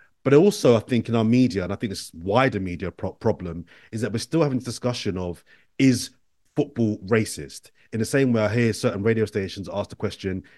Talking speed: 210 wpm